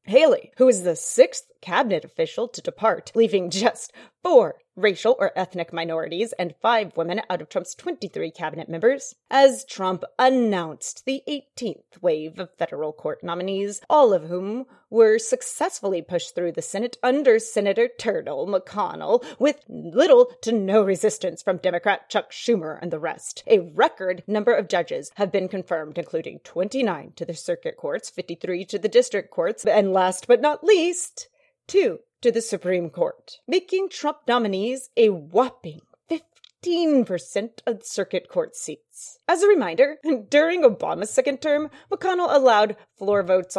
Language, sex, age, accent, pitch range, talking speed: English, female, 30-49, American, 185-290 Hz, 150 wpm